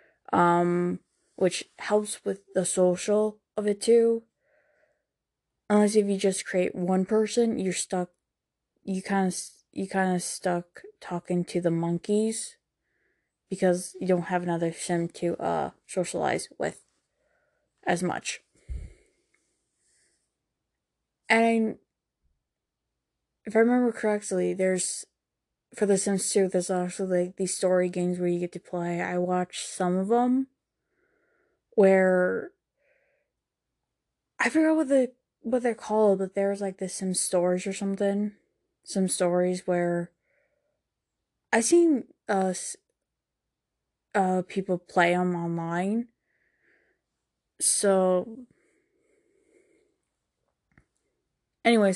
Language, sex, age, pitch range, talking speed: English, female, 20-39, 180-235 Hz, 110 wpm